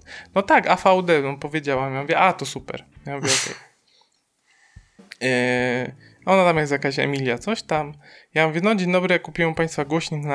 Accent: native